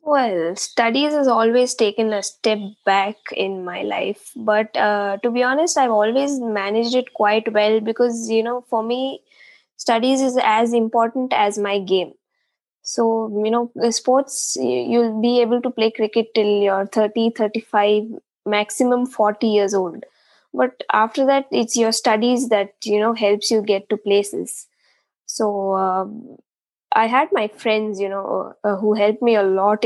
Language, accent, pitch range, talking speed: English, Indian, 200-235 Hz, 160 wpm